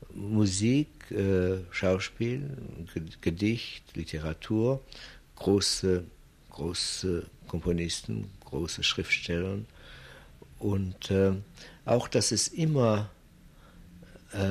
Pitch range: 80-105 Hz